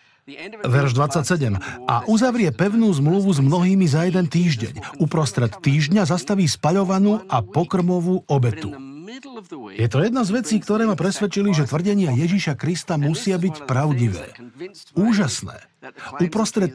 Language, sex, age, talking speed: Slovak, male, 50-69, 125 wpm